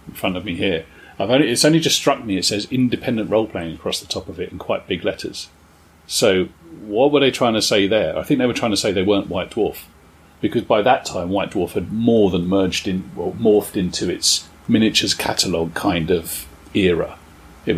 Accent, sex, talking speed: British, male, 225 wpm